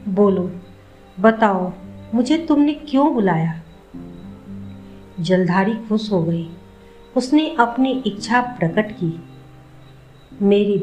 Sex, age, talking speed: female, 50-69, 90 wpm